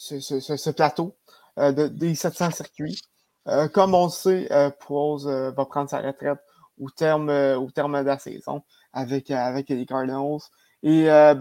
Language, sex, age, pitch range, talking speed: French, male, 20-39, 140-160 Hz, 190 wpm